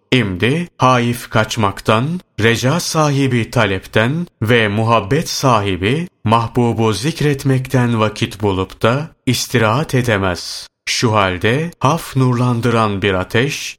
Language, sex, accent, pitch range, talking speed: Turkish, male, native, 105-135 Hz, 95 wpm